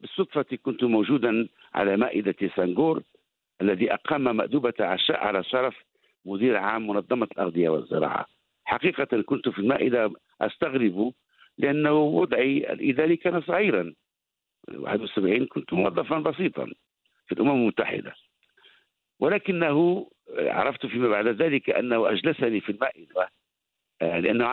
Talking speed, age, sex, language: 110 wpm, 60-79, male, English